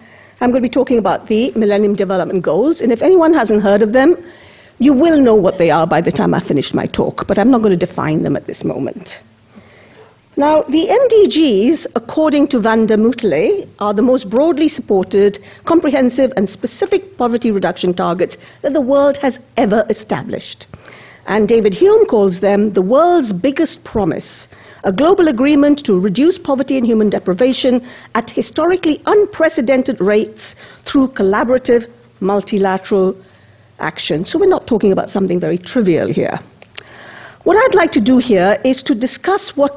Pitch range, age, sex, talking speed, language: 200-300 Hz, 50-69, female, 165 wpm, English